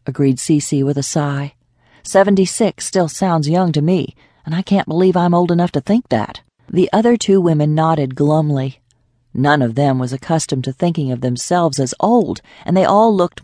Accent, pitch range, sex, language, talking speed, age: American, 140-180 Hz, female, English, 190 wpm, 40-59